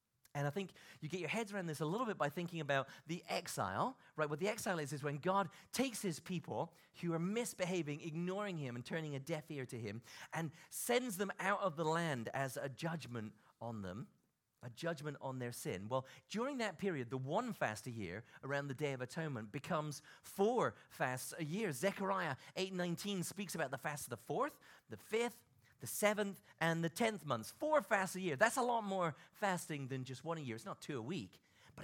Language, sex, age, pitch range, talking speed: English, male, 40-59, 135-185 Hz, 215 wpm